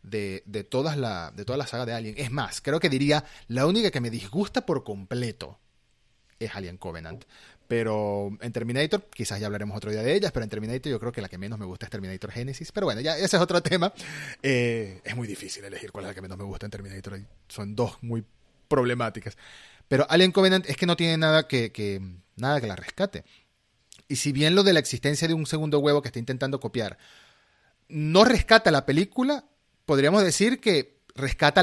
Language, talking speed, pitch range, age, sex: Spanish, 210 wpm, 110-155 Hz, 30-49, male